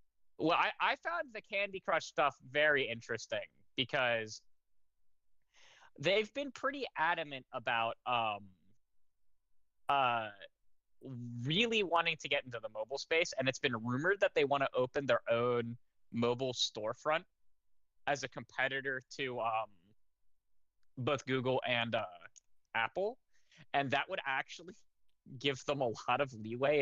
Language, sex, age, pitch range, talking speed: English, male, 20-39, 110-140 Hz, 130 wpm